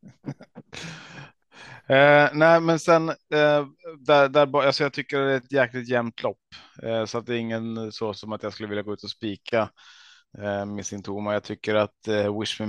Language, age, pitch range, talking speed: Swedish, 20-39, 105-120 Hz, 190 wpm